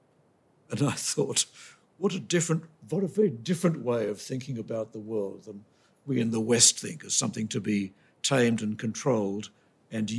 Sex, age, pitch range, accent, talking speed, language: male, 60-79, 115-155 Hz, British, 175 wpm, English